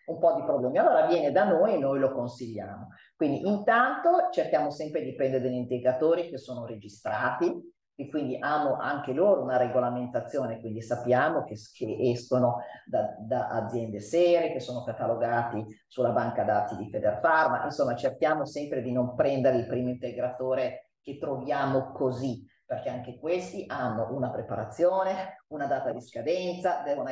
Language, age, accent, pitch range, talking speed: Italian, 40-59, native, 120-150 Hz, 155 wpm